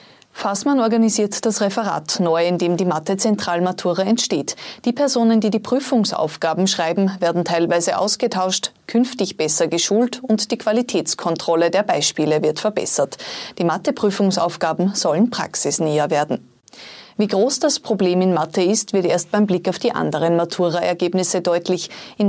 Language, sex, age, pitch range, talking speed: German, female, 20-39, 170-220 Hz, 135 wpm